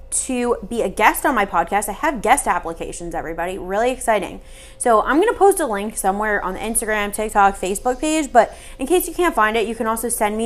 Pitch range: 205-275 Hz